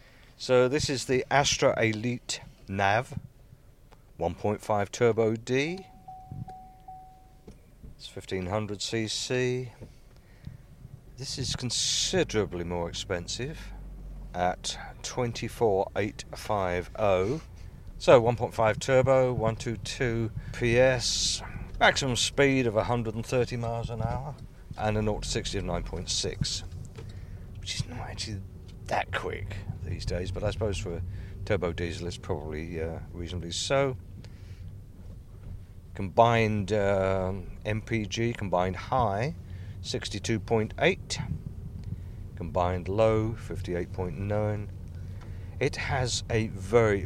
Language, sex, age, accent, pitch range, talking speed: English, male, 50-69, British, 95-120 Hz, 90 wpm